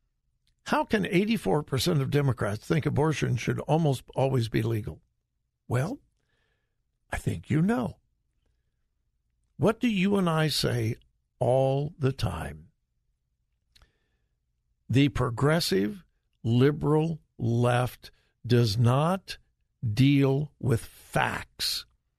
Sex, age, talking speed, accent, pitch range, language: male, 60-79, 95 wpm, American, 115-165 Hz, English